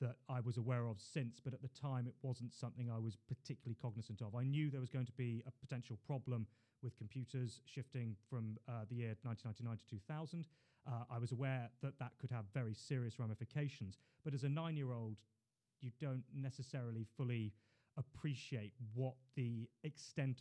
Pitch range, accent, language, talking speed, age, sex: 120-135 Hz, British, English, 180 wpm, 30-49, male